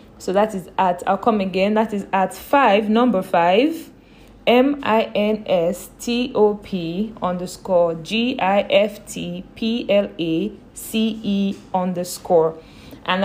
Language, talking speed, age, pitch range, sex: English, 85 wpm, 20-39, 185-225 Hz, female